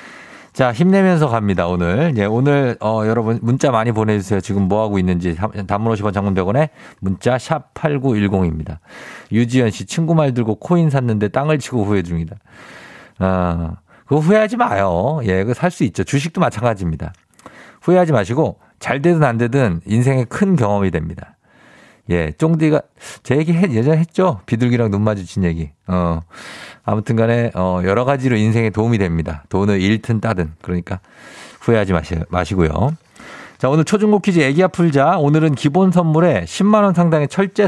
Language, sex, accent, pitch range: Korean, male, native, 100-155 Hz